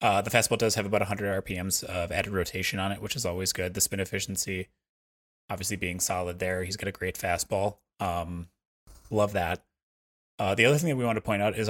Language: English